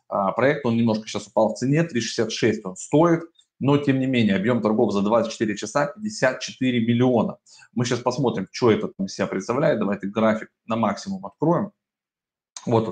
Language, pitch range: Russian, 105-130 Hz